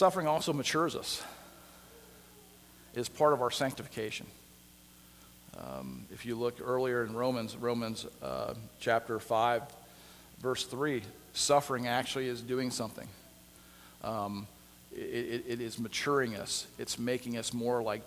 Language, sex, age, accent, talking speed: English, male, 40-59, American, 130 wpm